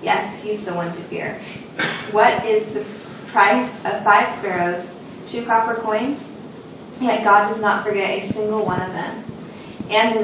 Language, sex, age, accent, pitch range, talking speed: English, female, 10-29, American, 190-225 Hz, 165 wpm